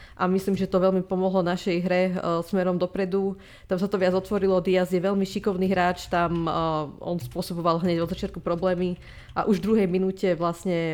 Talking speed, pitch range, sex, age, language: 175 wpm, 170-195 Hz, female, 20-39, Slovak